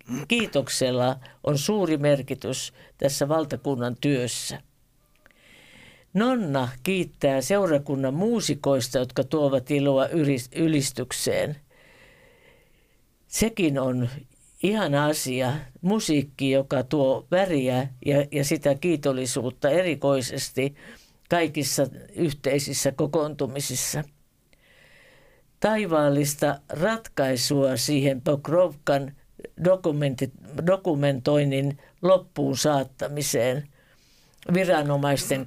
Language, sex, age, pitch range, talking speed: Finnish, female, 50-69, 135-165 Hz, 65 wpm